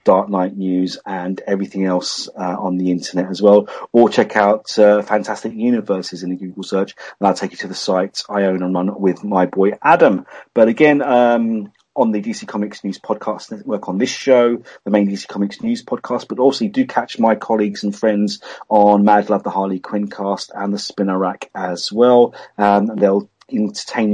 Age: 30-49